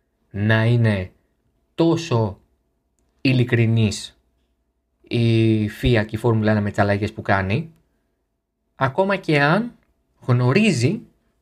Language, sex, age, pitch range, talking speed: Greek, male, 20-39, 110-155 Hz, 95 wpm